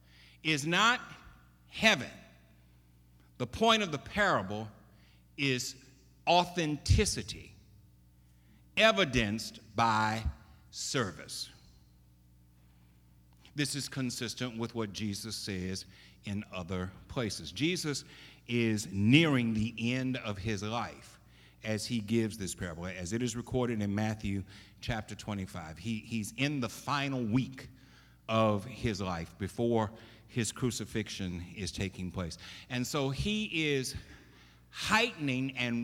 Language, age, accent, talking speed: English, 50-69, American, 110 wpm